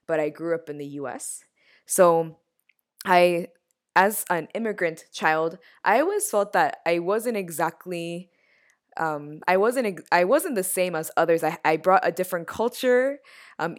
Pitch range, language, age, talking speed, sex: 165-235 Hz, English, 20-39, 155 wpm, female